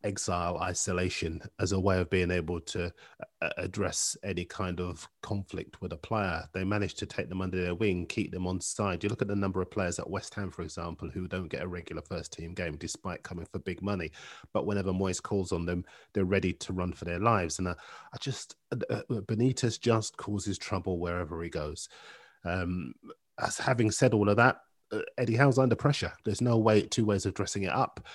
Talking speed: 215 wpm